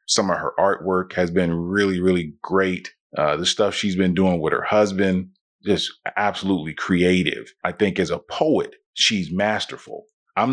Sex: male